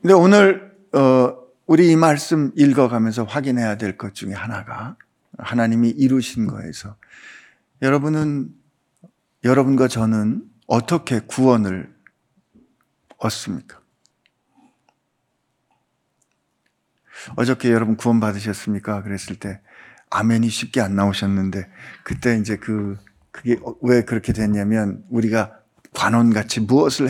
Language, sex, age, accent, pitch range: Korean, male, 50-69, native, 110-170 Hz